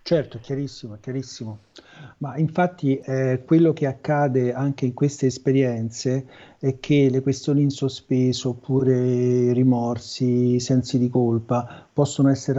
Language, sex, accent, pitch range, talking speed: Italian, male, native, 115-135 Hz, 130 wpm